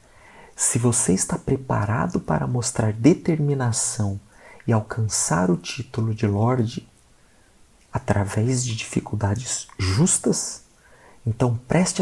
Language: Portuguese